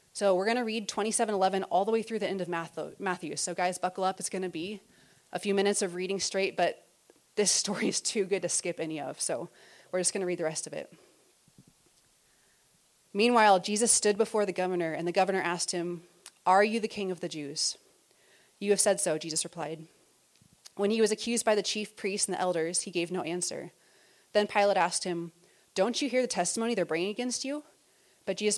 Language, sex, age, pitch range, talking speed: English, female, 30-49, 170-205 Hz, 215 wpm